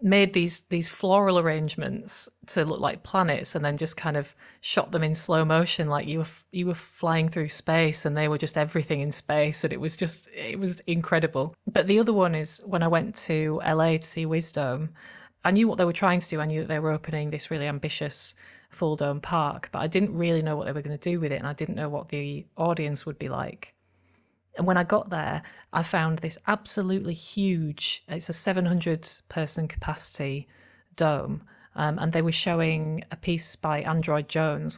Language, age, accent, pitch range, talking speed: English, 30-49, British, 150-175 Hz, 210 wpm